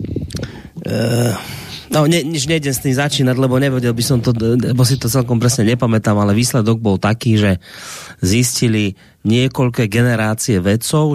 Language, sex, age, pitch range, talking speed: Slovak, male, 30-49, 105-130 Hz, 145 wpm